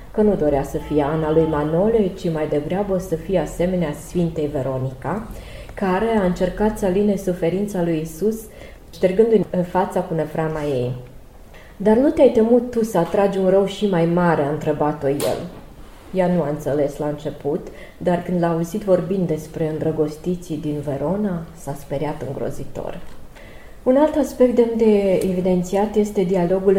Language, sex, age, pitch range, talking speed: Romanian, female, 20-39, 150-190 Hz, 160 wpm